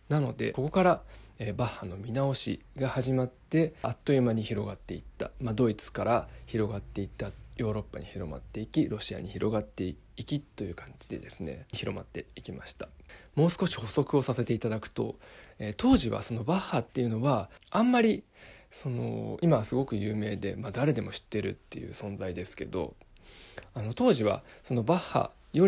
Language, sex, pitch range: Japanese, male, 105-145 Hz